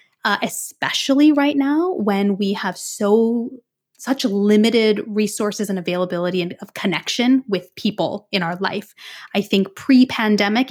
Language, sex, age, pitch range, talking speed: English, female, 20-39, 195-260 Hz, 135 wpm